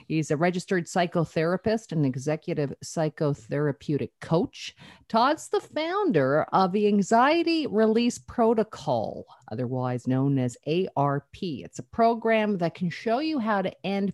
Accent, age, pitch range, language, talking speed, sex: American, 50-69, 155-225 Hz, English, 125 wpm, female